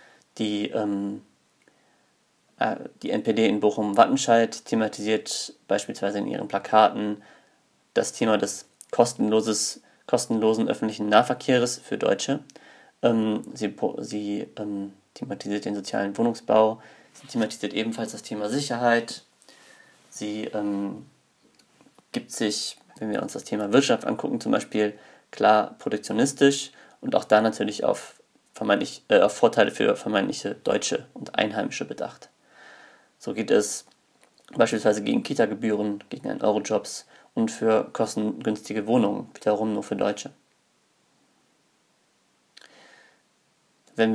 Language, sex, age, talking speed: German, male, 30-49, 105 wpm